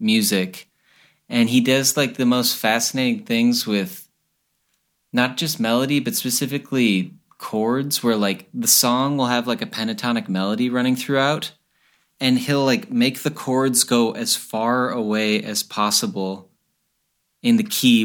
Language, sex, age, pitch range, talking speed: English, male, 30-49, 115-155 Hz, 145 wpm